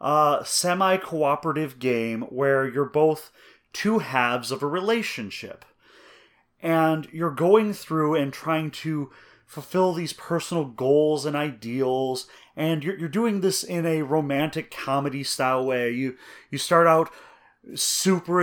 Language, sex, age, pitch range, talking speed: English, male, 30-49, 145-195 Hz, 130 wpm